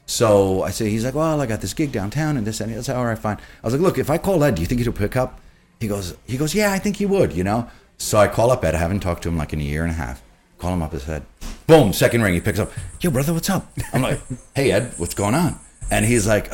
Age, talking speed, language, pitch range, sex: 30-49, 315 wpm, English, 85-125 Hz, male